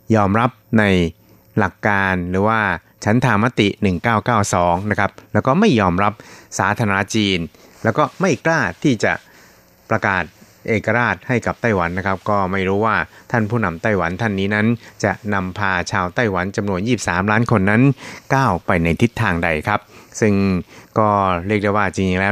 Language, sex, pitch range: Thai, male, 95-110 Hz